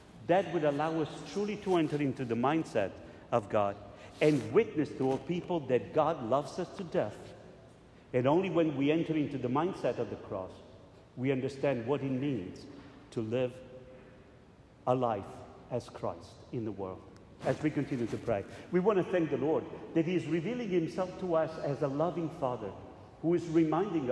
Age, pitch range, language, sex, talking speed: 50-69, 125-170 Hz, English, male, 180 wpm